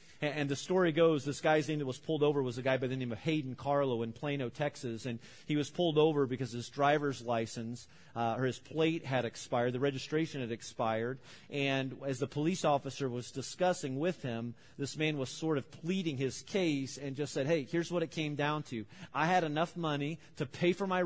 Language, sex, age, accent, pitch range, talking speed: English, male, 40-59, American, 120-145 Hz, 220 wpm